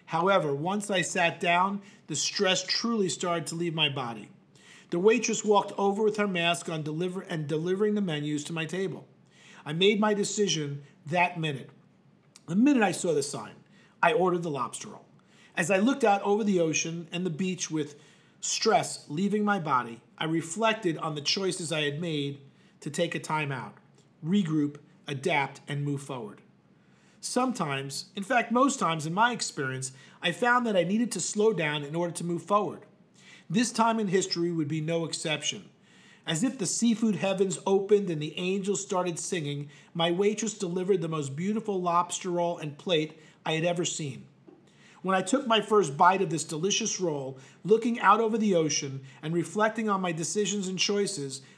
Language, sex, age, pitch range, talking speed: English, male, 40-59, 155-205 Hz, 175 wpm